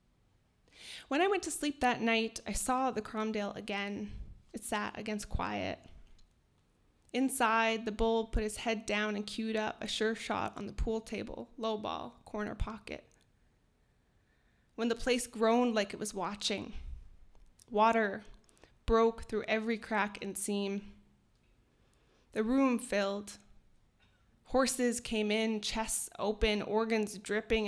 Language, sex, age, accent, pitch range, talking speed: English, female, 20-39, American, 205-230 Hz, 135 wpm